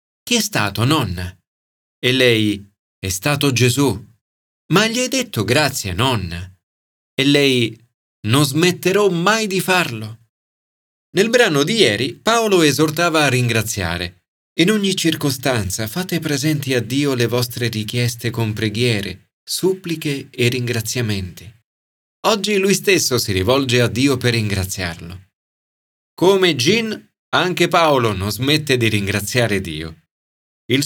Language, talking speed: Italian, 125 wpm